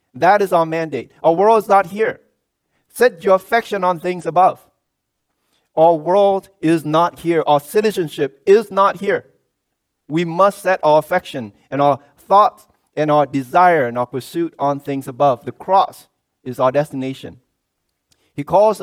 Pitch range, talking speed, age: 130-180 Hz, 155 wpm, 40-59